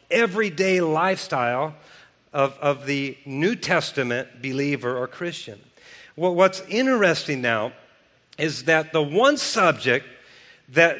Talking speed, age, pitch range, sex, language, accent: 110 wpm, 50-69, 160-215 Hz, male, English, American